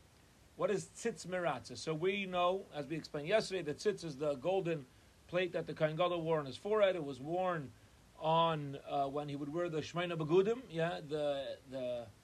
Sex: male